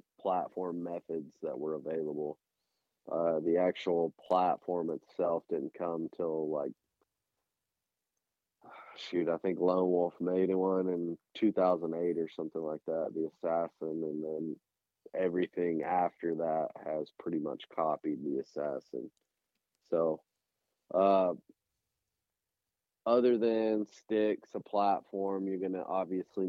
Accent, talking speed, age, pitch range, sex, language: American, 115 wpm, 30-49, 85-95 Hz, male, English